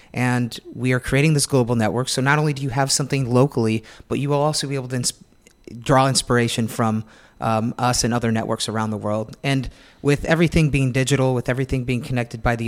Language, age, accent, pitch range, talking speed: English, 30-49, American, 120-145 Hz, 210 wpm